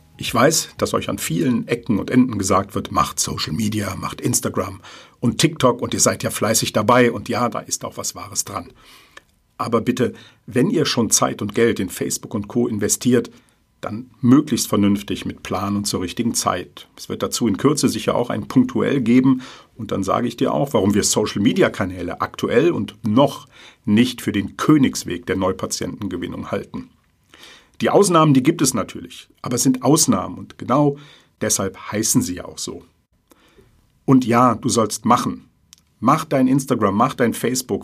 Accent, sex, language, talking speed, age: German, male, German, 180 wpm, 50-69